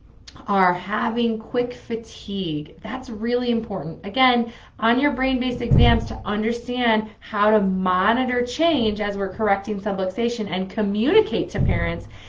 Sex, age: female, 20-39